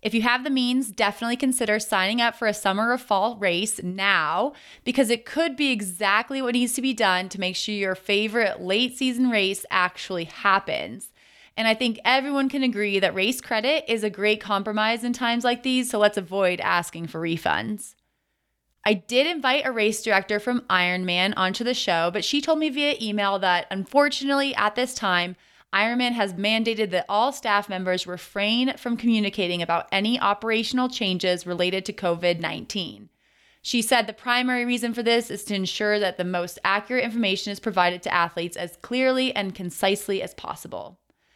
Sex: female